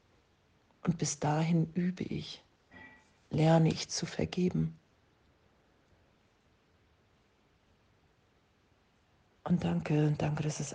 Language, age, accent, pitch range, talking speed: German, 50-69, German, 105-155 Hz, 80 wpm